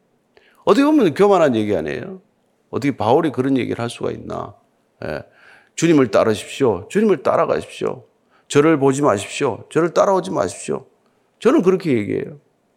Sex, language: male, Korean